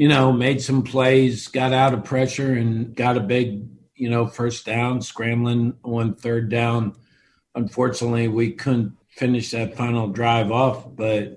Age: 50-69